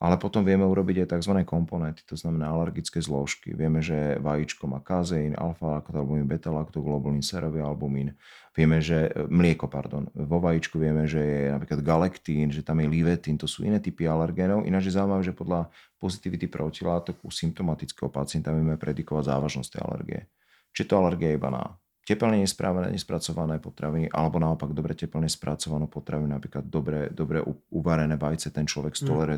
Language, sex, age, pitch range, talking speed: Slovak, male, 30-49, 75-85 Hz, 165 wpm